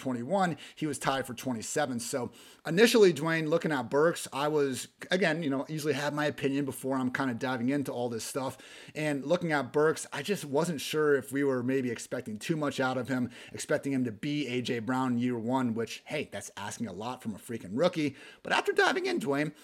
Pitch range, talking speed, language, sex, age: 130-165 Hz, 215 wpm, English, male, 30-49